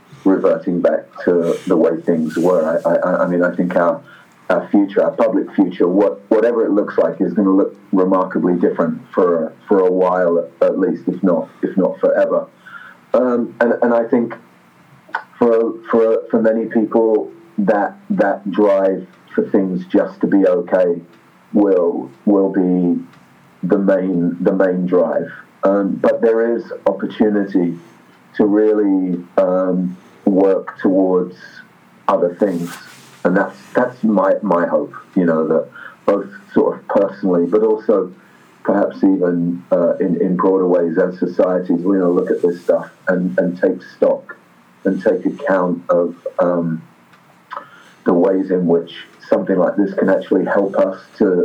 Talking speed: 155 wpm